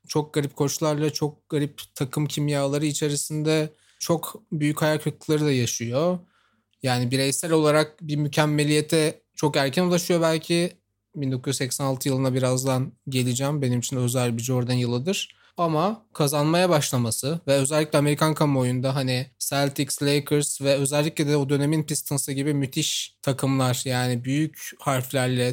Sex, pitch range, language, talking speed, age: male, 135-165 Hz, Turkish, 125 wpm, 30-49